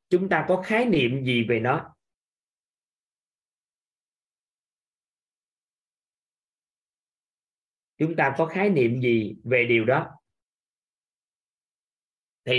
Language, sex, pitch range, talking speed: Vietnamese, male, 125-180 Hz, 85 wpm